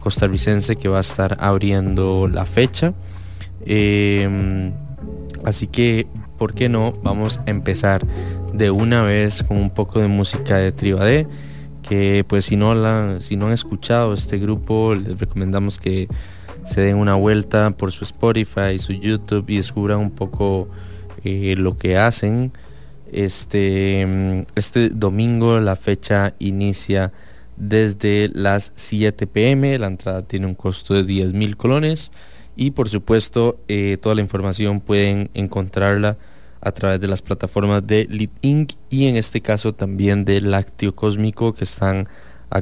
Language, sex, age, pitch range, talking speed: English, male, 20-39, 95-105 Hz, 150 wpm